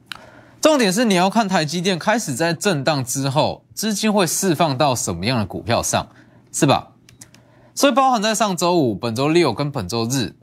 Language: Chinese